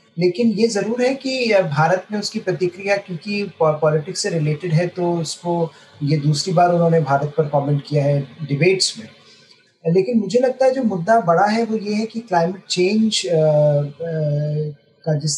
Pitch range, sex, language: 140-175 Hz, male, Hindi